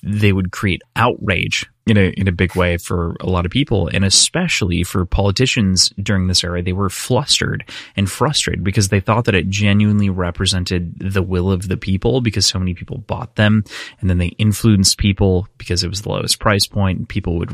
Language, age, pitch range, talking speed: English, 20-39, 90-115 Hz, 200 wpm